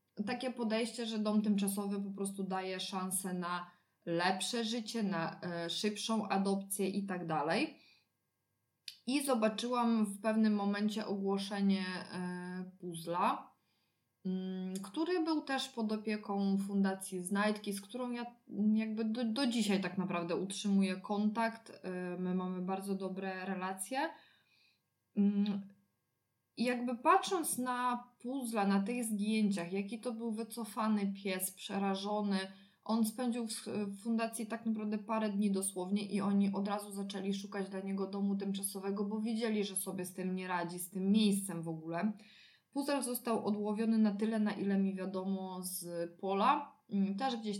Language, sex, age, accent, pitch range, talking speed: Polish, female, 20-39, native, 185-220 Hz, 135 wpm